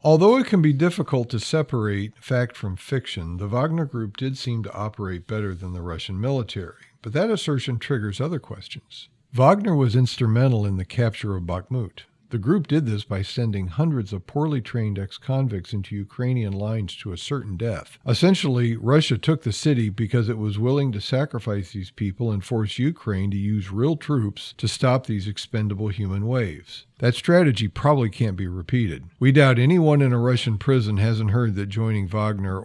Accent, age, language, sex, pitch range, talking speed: American, 50-69, English, male, 100-130 Hz, 180 wpm